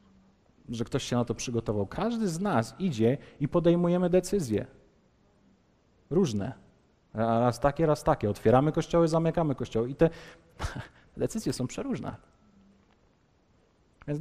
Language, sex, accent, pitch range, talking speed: Polish, male, native, 110-160 Hz, 120 wpm